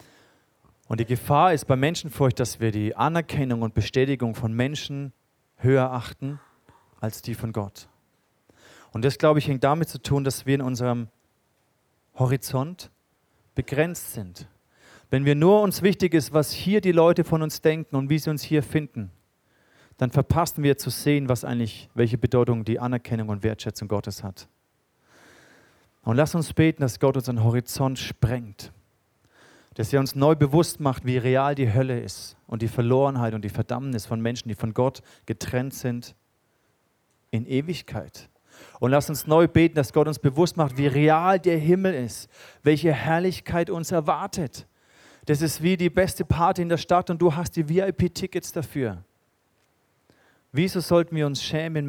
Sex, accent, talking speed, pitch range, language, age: male, German, 165 wpm, 115-155 Hz, German, 40-59